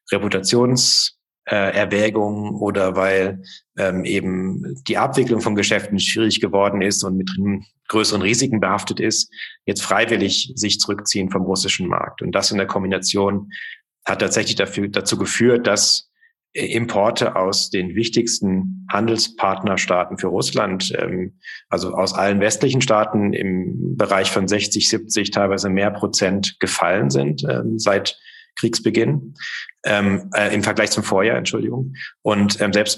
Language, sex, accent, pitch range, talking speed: German, male, German, 95-110 Hz, 135 wpm